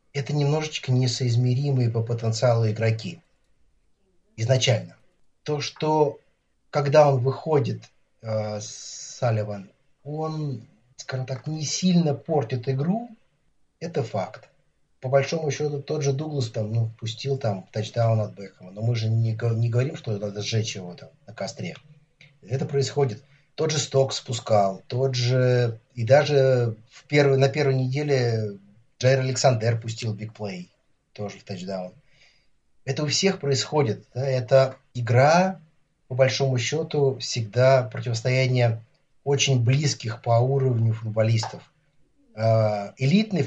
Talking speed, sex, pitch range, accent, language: 125 wpm, male, 115-140 Hz, native, Russian